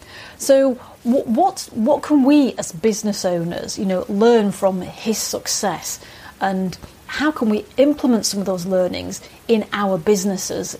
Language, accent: English, British